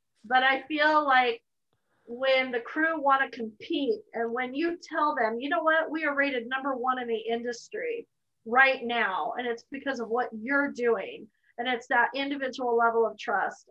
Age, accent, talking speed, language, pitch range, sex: 30-49, American, 185 wpm, English, 235-315 Hz, female